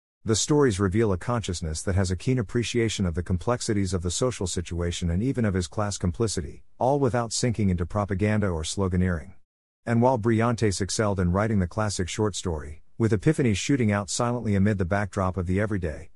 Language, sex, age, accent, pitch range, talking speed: English, male, 50-69, American, 90-115 Hz, 190 wpm